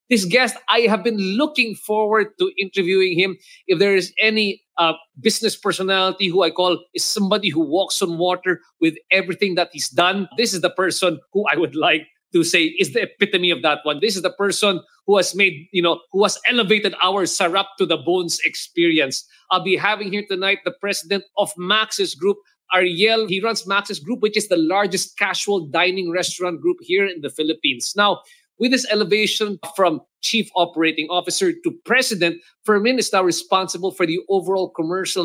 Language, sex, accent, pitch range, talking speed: English, male, Filipino, 180-220 Hz, 185 wpm